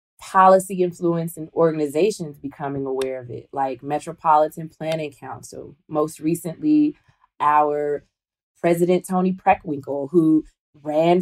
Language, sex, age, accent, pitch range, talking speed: English, female, 20-39, American, 145-175 Hz, 105 wpm